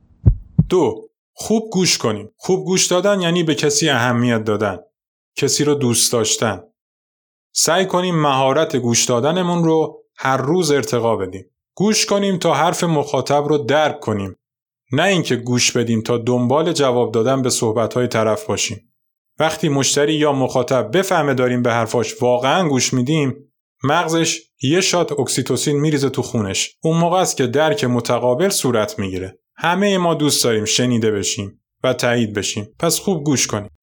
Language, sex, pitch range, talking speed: Persian, male, 120-160 Hz, 150 wpm